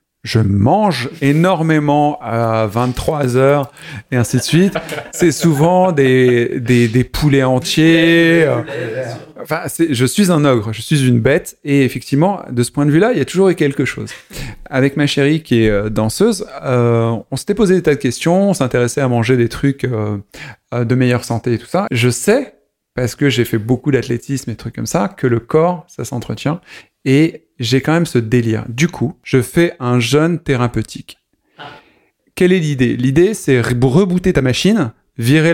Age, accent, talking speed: 30-49, French, 185 wpm